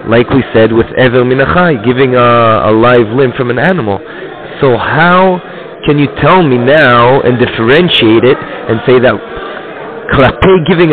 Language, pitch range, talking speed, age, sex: English, 125-165 Hz, 160 wpm, 30-49, male